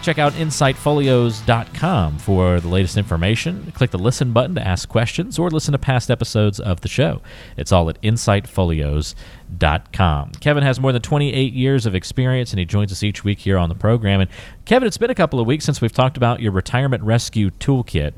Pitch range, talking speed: 95-125 Hz, 200 wpm